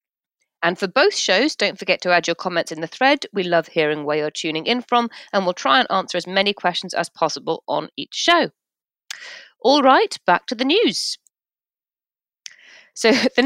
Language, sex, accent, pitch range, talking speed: English, female, British, 165-235 Hz, 185 wpm